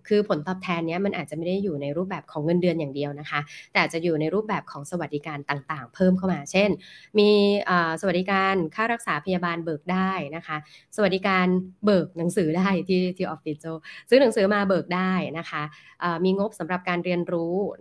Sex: female